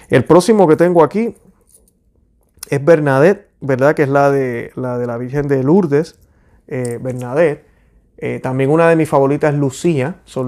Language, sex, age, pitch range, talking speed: Spanish, male, 30-49, 130-155 Hz, 165 wpm